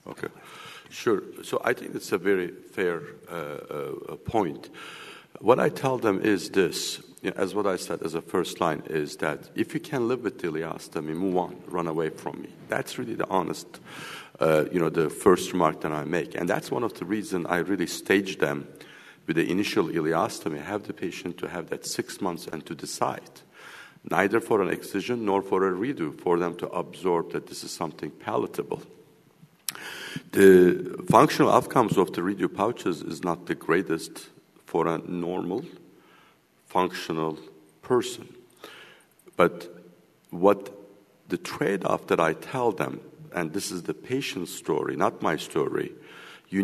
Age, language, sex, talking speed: 50-69, English, male, 170 wpm